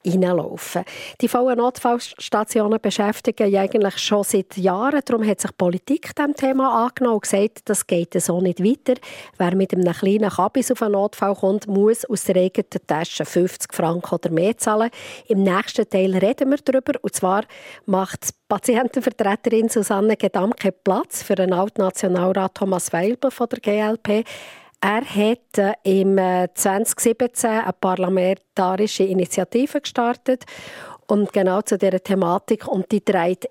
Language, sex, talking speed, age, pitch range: German, female, 140 wpm, 40-59, 190-230 Hz